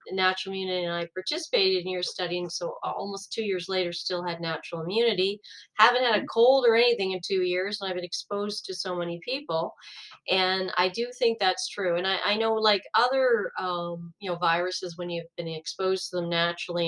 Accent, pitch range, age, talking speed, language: American, 170-215 Hz, 40-59, 205 wpm, English